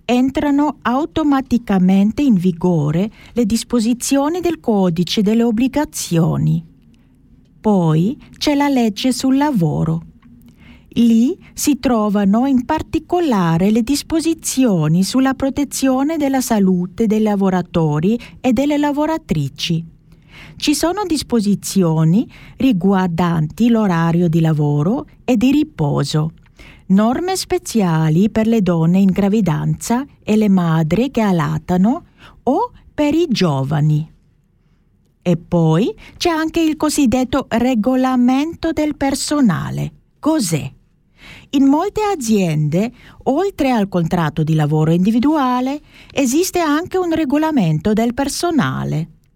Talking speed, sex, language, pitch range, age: 100 wpm, female, German, 175-280 Hz, 40-59